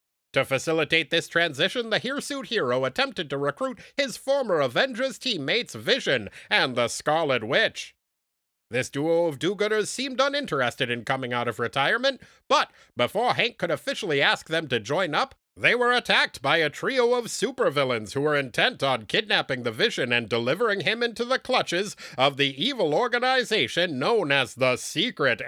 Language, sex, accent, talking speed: English, male, American, 160 wpm